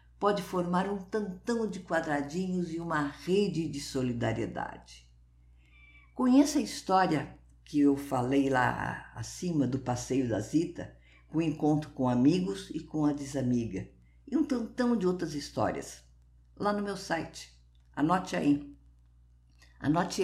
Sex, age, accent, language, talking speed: female, 50-69, Brazilian, Portuguese, 135 wpm